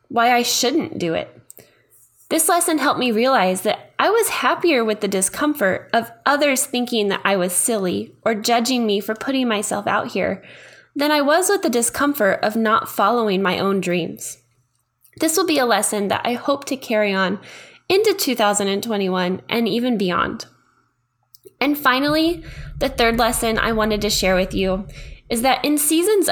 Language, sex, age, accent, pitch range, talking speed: English, female, 10-29, American, 205-275 Hz, 170 wpm